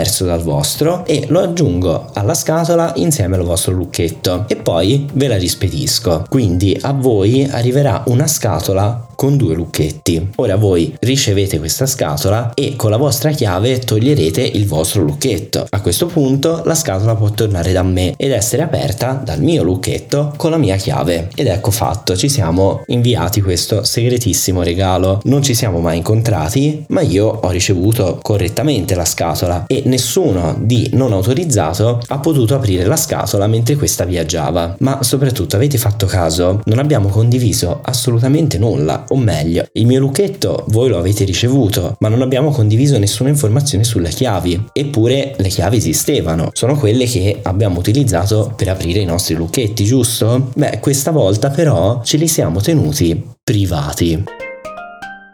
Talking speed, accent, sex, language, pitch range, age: 155 wpm, native, male, Italian, 95-140 Hz, 20-39